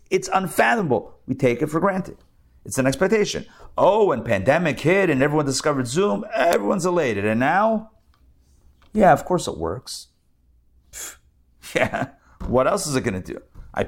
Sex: male